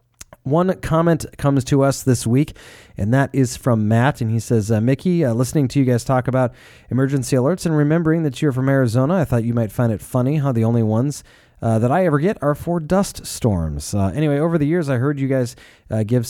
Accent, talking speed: American, 230 wpm